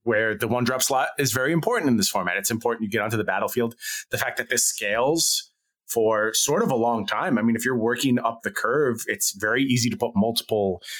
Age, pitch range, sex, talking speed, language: 30-49, 105-140 Hz, male, 235 wpm, English